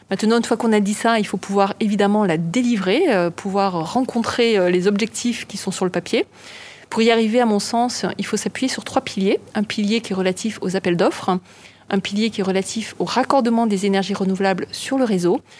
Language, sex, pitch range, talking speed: French, female, 195-230 Hz, 210 wpm